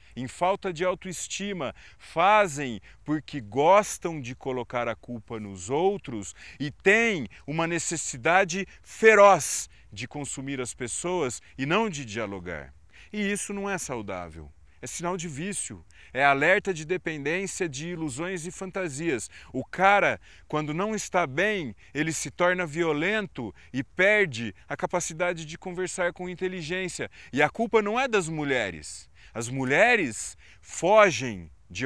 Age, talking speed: 40-59, 135 wpm